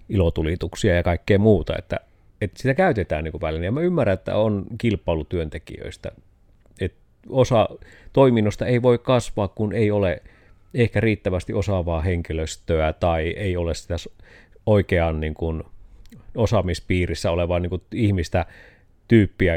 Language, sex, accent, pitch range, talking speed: Finnish, male, native, 90-120 Hz, 120 wpm